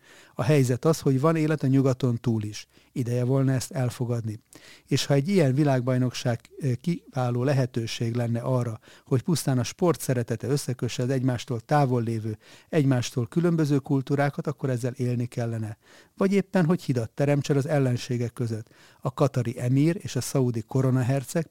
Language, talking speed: Hungarian, 155 wpm